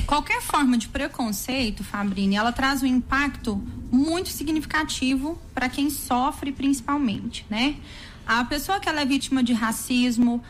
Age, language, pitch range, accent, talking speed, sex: 20-39, Portuguese, 240-290 Hz, Brazilian, 135 wpm, female